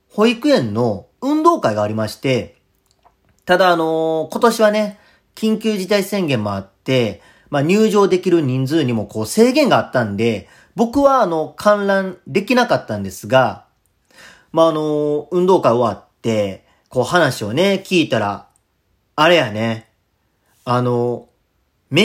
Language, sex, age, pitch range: Japanese, male, 40-59, 125-195 Hz